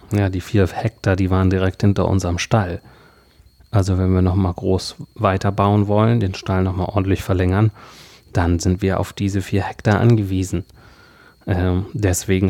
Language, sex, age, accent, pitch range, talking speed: German, male, 30-49, German, 95-110 Hz, 155 wpm